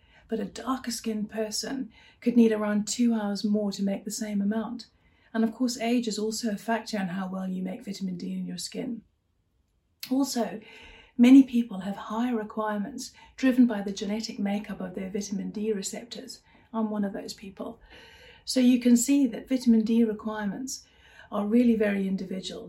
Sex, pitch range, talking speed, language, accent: female, 200-235 Hz, 175 wpm, English, British